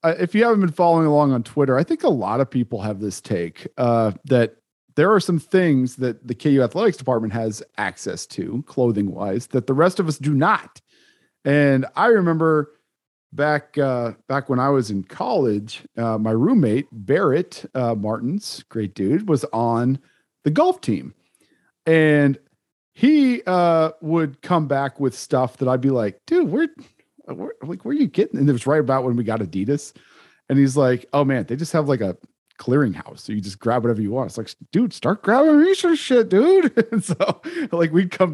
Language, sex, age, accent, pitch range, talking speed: English, male, 40-59, American, 120-175 Hz, 195 wpm